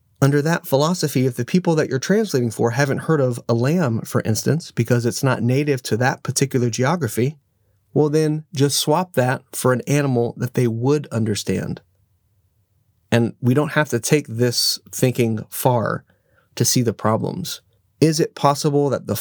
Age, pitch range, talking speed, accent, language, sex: 30-49, 110-145 Hz, 170 wpm, American, English, male